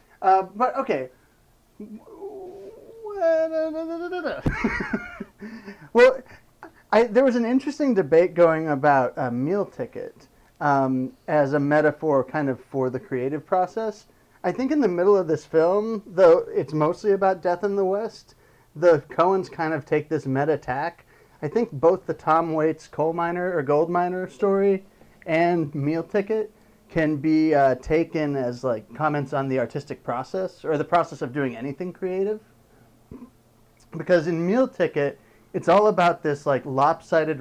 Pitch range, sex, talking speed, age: 135-185 Hz, male, 145 wpm, 30-49